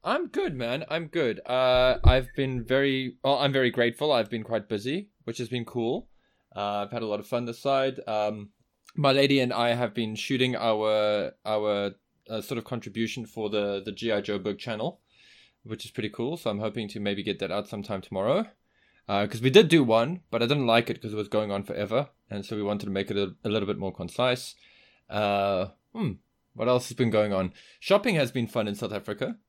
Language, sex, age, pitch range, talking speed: English, male, 20-39, 100-125 Hz, 225 wpm